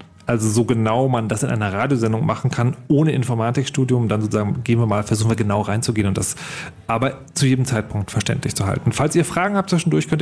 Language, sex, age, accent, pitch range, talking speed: German, male, 40-59, German, 120-155 Hz, 210 wpm